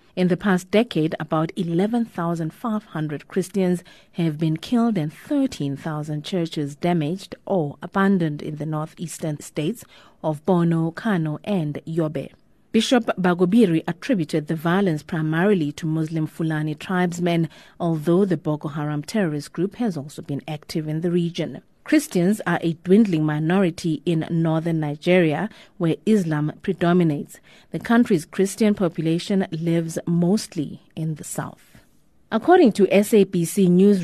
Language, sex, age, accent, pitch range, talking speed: English, female, 30-49, South African, 155-195 Hz, 125 wpm